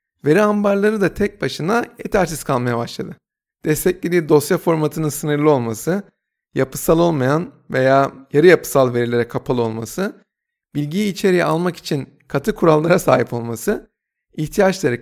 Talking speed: 120 wpm